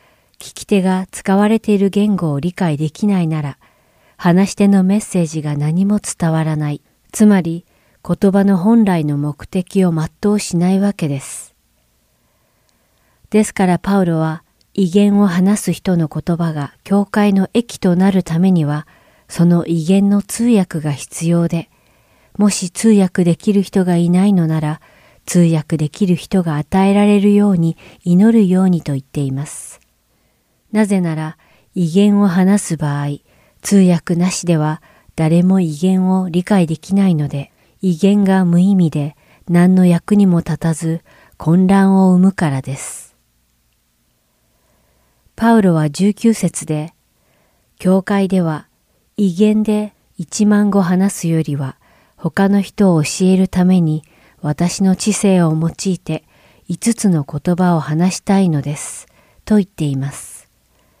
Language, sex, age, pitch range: English, female, 40-59, 155-195 Hz